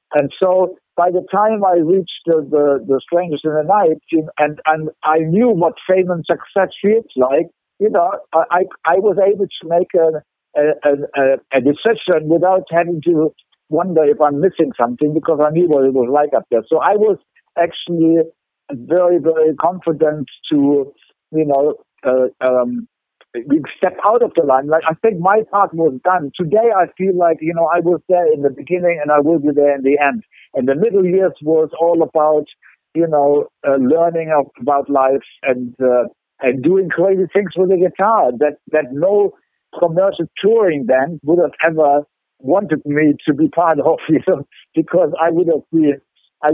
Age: 60-79